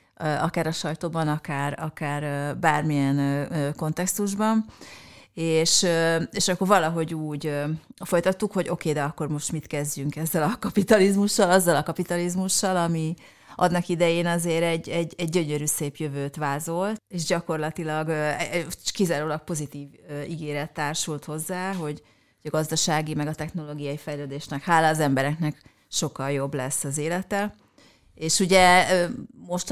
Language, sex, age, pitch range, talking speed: Hungarian, female, 30-49, 150-180 Hz, 125 wpm